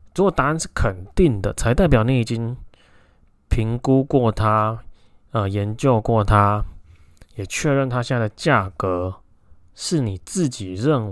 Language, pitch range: Chinese, 100-125 Hz